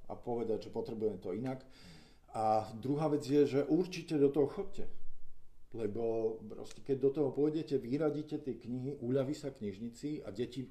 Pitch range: 120-155 Hz